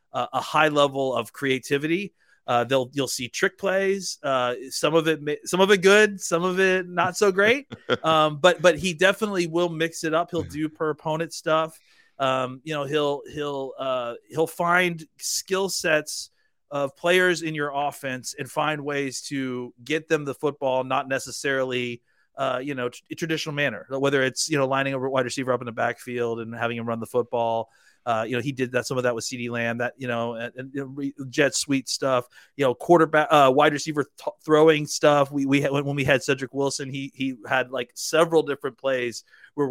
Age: 30-49